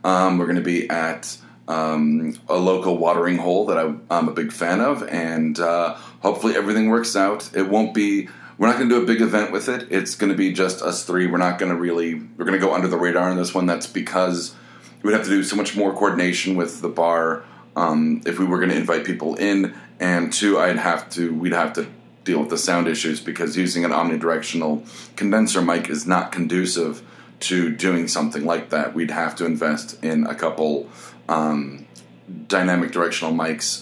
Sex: male